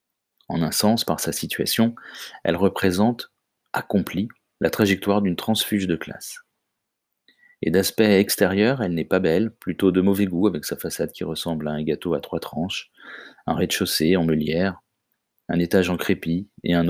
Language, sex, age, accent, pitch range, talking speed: French, male, 30-49, French, 85-105 Hz, 165 wpm